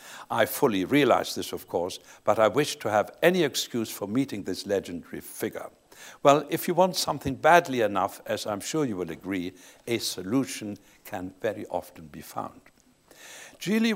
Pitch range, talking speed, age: 105-150 Hz, 170 wpm, 60-79